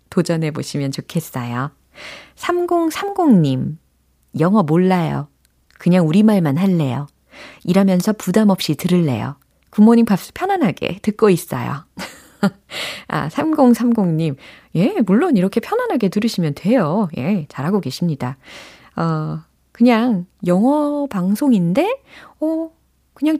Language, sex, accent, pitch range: Korean, female, native, 150-220 Hz